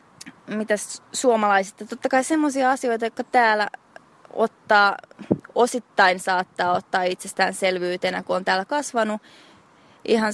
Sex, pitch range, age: female, 185-230 Hz, 20-39